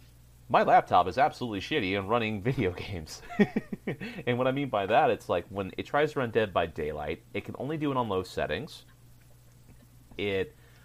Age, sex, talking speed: 30-49, male, 190 wpm